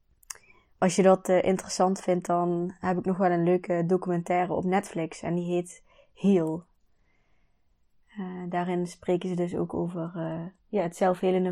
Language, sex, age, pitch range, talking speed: Dutch, female, 20-39, 165-190 Hz, 155 wpm